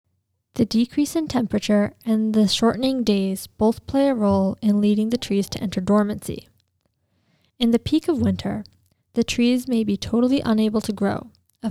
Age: 10-29